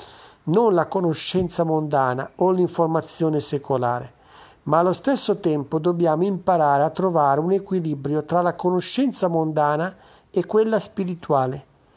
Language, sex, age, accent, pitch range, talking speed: Italian, male, 50-69, native, 150-205 Hz, 120 wpm